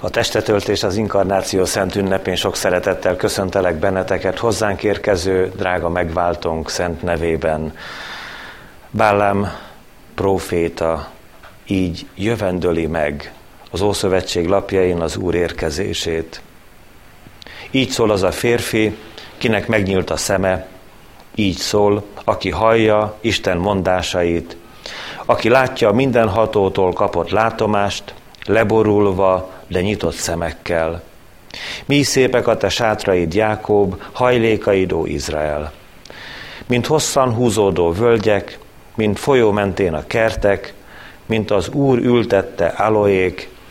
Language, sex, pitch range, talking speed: Hungarian, male, 90-110 Hz, 100 wpm